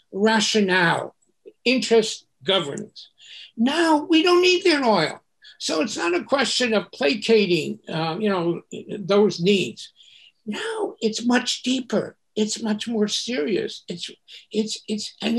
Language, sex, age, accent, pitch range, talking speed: English, male, 60-79, American, 170-235 Hz, 130 wpm